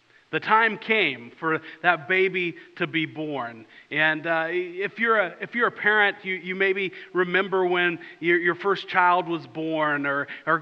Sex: male